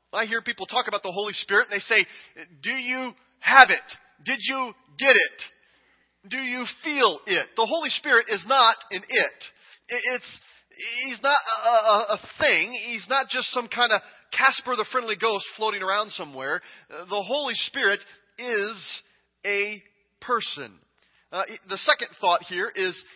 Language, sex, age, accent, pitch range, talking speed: English, male, 30-49, American, 200-255 Hz, 160 wpm